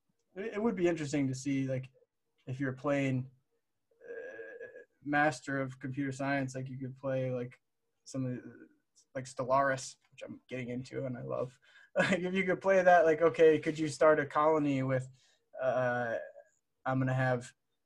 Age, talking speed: 20-39, 160 wpm